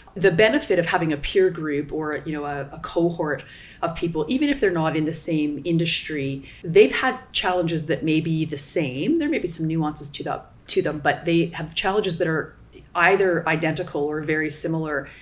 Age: 30-49